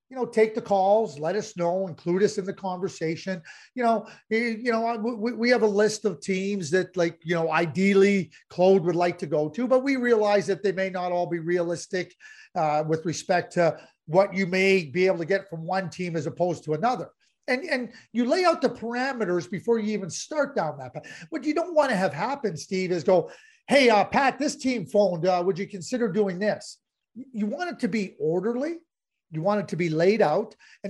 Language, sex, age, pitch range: English, male, 40-59, 175-230 Hz